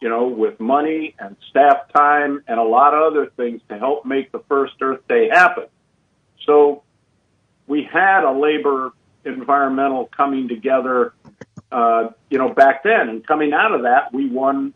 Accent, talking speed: American, 165 wpm